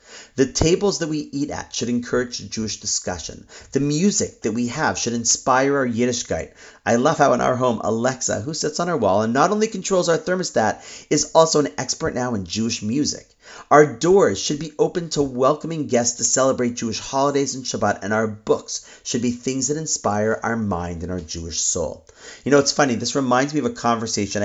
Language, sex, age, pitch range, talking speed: English, male, 40-59, 110-150 Hz, 205 wpm